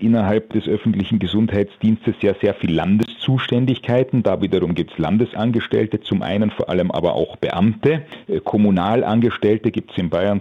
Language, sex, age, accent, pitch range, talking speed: German, male, 40-59, German, 105-125 Hz, 145 wpm